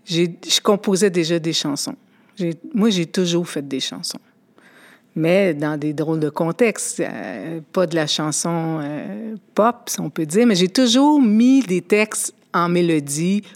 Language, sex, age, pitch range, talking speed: French, female, 50-69, 170-230 Hz, 170 wpm